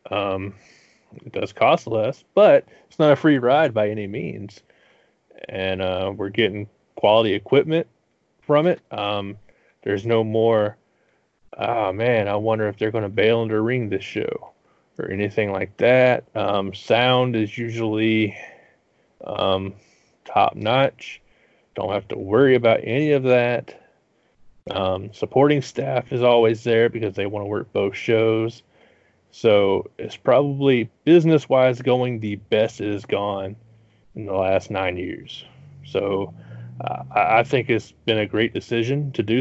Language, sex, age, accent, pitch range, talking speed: English, male, 30-49, American, 100-120 Hz, 150 wpm